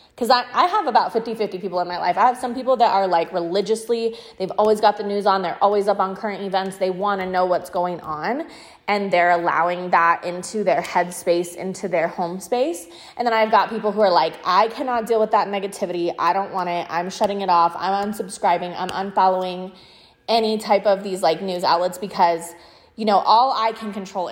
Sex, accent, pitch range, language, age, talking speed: female, American, 180-230 Hz, English, 20-39, 215 wpm